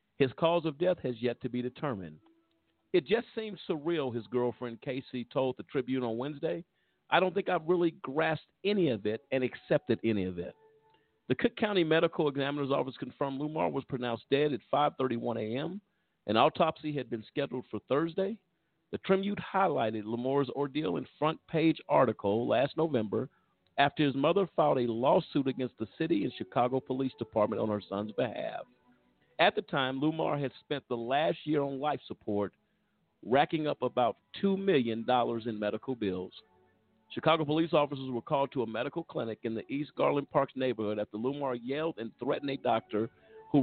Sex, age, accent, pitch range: male, 50-69, American, 115-160 Hz